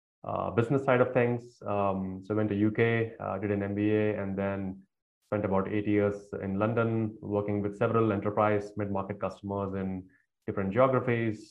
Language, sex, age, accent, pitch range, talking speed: English, male, 20-39, Indian, 95-110 Hz, 165 wpm